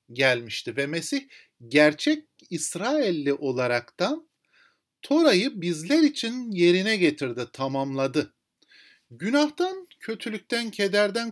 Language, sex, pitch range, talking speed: Turkish, male, 125-210 Hz, 80 wpm